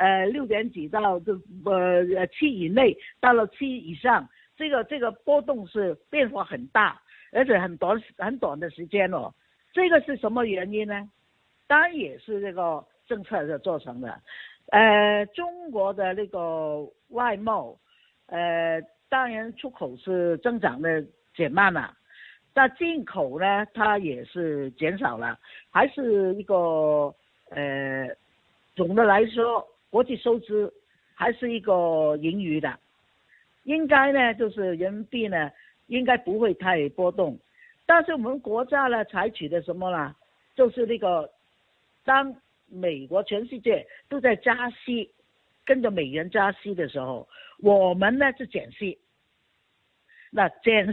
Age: 50-69